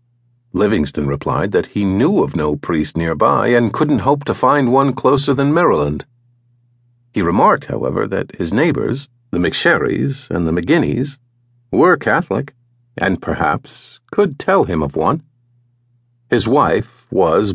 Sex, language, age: male, English, 50-69